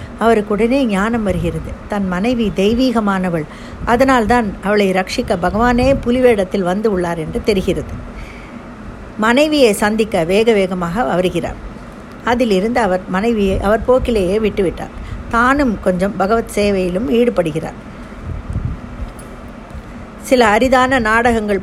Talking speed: 90 wpm